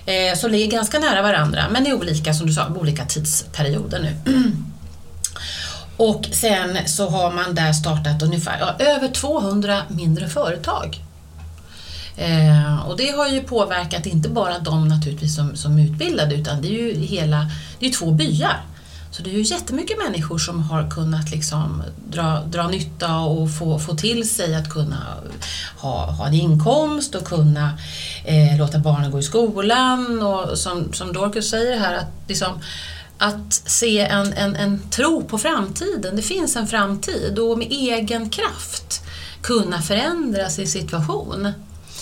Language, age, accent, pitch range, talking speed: Swedish, 30-49, native, 140-215 Hz, 155 wpm